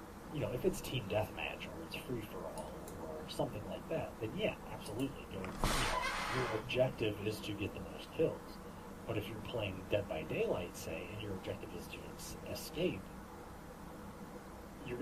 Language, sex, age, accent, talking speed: English, male, 30-49, American, 155 wpm